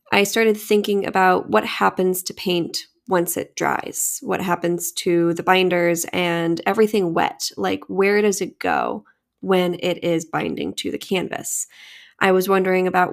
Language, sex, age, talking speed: English, female, 10-29, 160 wpm